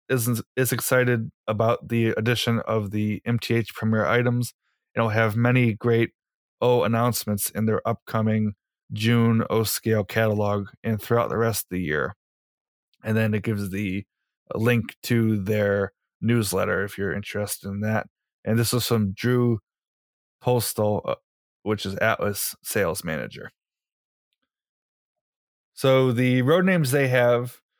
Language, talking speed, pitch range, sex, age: English, 130 wpm, 110-125 Hz, male, 20-39